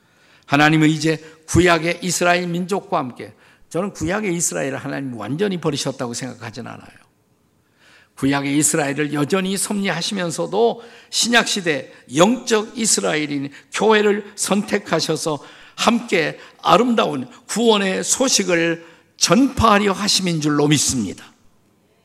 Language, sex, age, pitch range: Korean, male, 50-69, 140-200 Hz